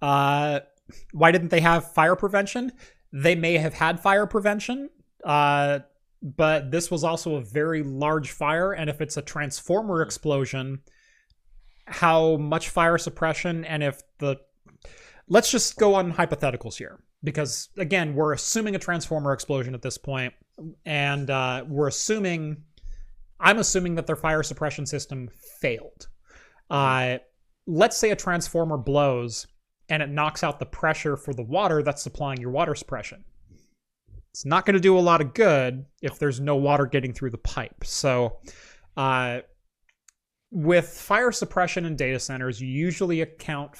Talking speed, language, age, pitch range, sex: 150 wpm, English, 30-49, 135-165 Hz, male